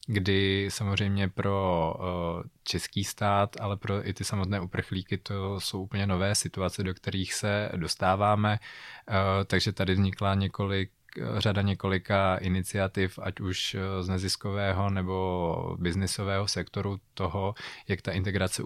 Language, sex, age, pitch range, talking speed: Czech, male, 20-39, 95-100 Hz, 120 wpm